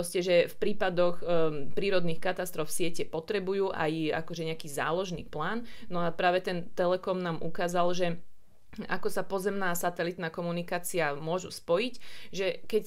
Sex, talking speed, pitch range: female, 145 wpm, 160-185 Hz